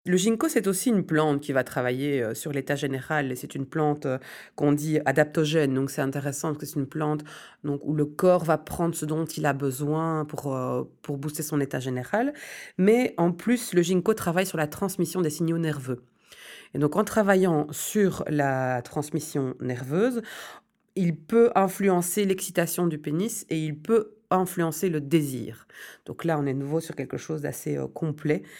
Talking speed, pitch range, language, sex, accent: 185 wpm, 145-185 Hz, French, female, French